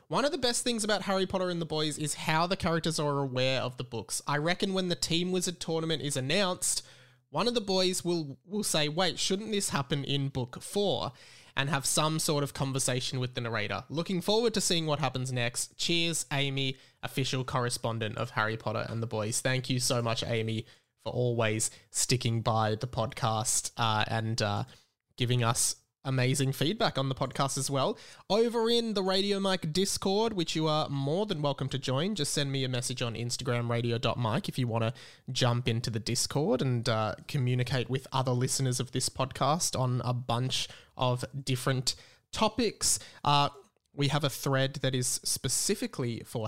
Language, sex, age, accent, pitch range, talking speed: English, male, 20-39, Australian, 125-165 Hz, 190 wpm